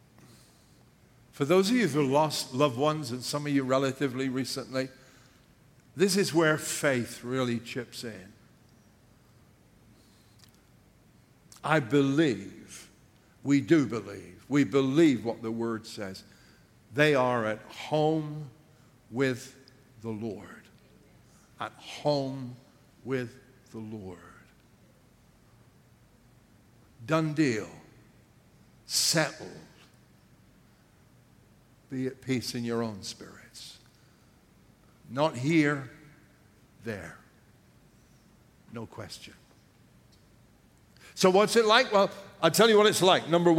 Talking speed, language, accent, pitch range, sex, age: 100 wpm, English, American, 115-155 Hz, male, 60-79